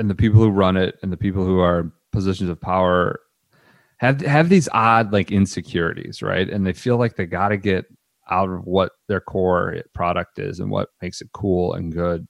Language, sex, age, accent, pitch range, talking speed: English, male, 30-49, American, 85-115 Hz, 210 wpm